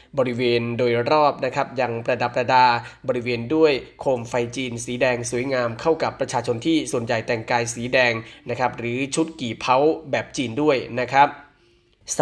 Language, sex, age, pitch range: Thai, male, 20-39, 120-145 Hz